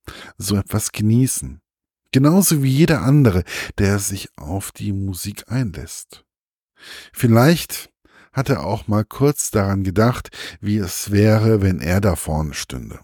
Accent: German